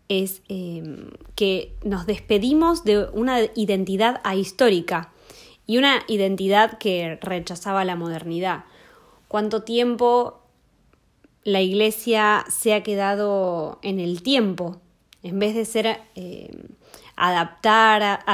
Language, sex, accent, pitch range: Spanish, female, Argentinian, 190-230 Hz